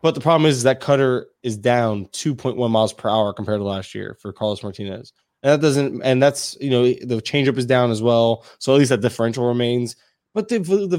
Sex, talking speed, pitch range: male, 230 wpm, 115-145 Hz